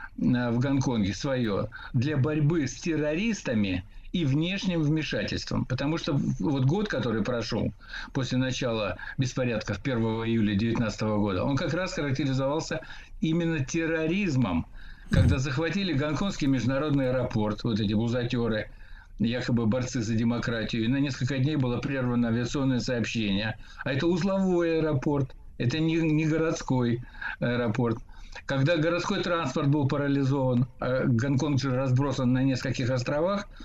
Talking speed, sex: 125 wpm, male